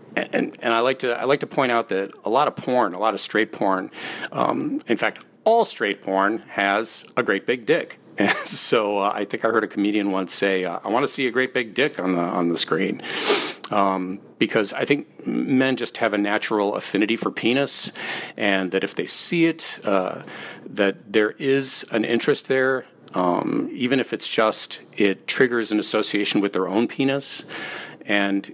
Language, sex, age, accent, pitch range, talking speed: English, male, 40-59, American, 100-130 Hz, 200 wpm